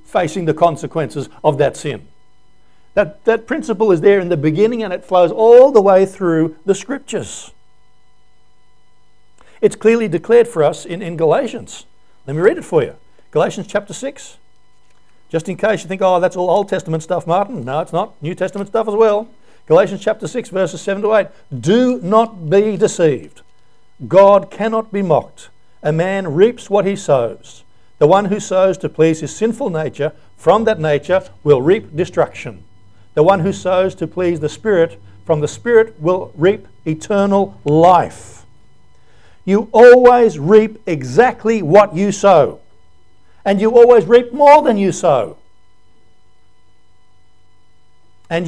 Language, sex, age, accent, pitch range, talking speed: English, male, 60-79, Australian, 155-215 Hz, 155 wpm